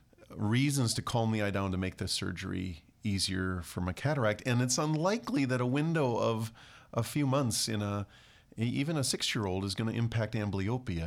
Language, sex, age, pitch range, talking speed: English, male, 40-59, 95-120 Hz, 185 wpm